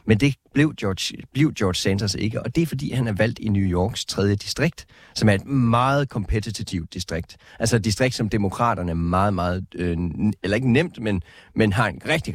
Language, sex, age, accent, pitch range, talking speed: Danish, male, 30-49, native, 95-125 Hz, 215 wpm